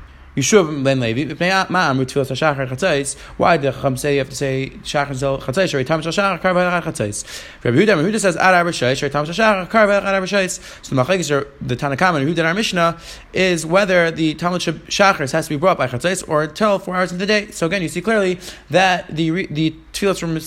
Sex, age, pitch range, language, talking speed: male, 20-39, 150-190 Hz, English, 175 wpm